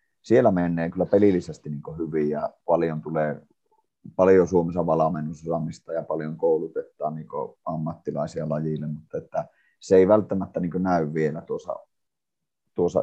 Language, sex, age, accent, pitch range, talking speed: Finnish, male, 30-49, native, 80-105 Hz, 125 wpm